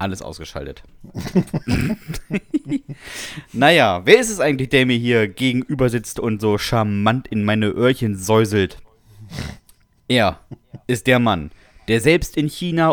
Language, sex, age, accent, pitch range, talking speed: German, male, 30-49, German, 115-150 Hz, 125 wpm